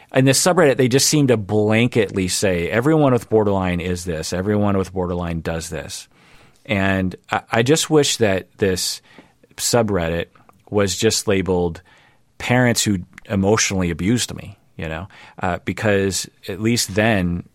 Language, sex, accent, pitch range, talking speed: English, male, American, 90-115 Hz, 145 wpm